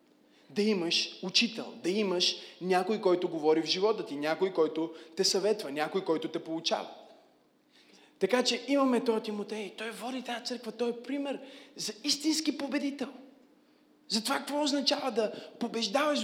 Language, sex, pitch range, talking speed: Bulgarian, male, 200-270 Hz, 150 wpm